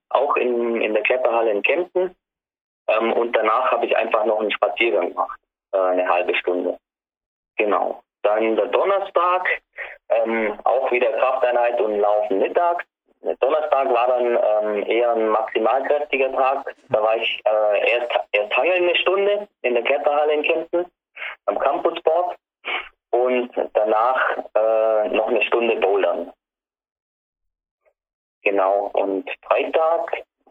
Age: 20-39